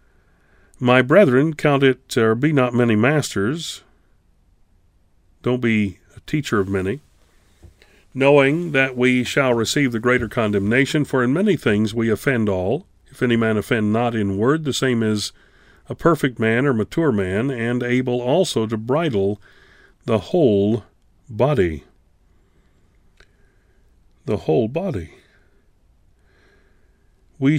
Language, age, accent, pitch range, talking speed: English, 40-59, American, 95-125 Hz, 125 wpm